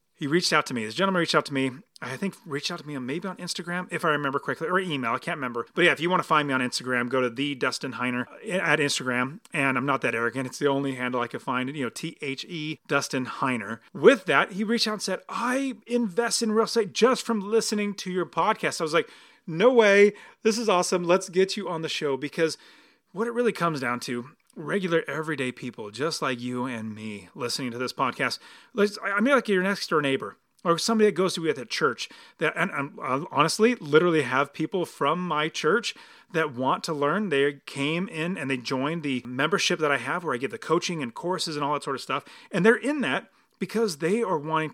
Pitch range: 135-195 Hz